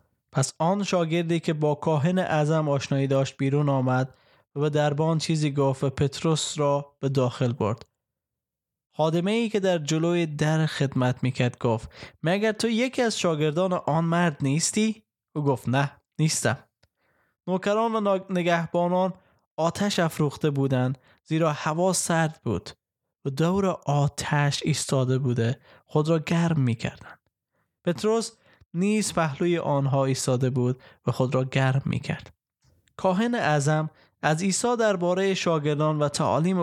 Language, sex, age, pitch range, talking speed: Persian, male, 20-39, 140-180 Hz, 130 wpm